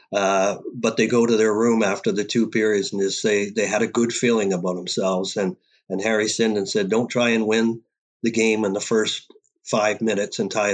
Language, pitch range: English, 105-120 Hz